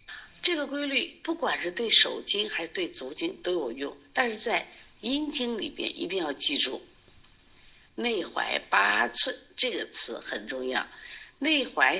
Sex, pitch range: female, 210-345 Hz